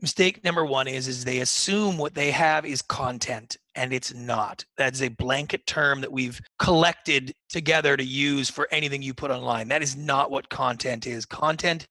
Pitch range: 135-175 Hz